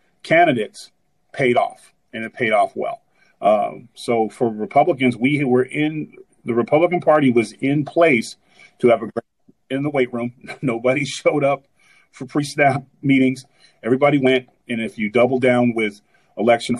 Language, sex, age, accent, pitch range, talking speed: English, male, 40-59, American, 115-140 Hz, 155 wpm